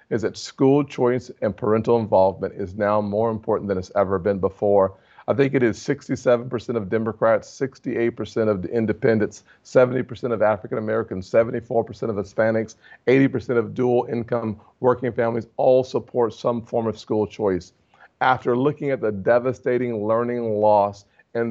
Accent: American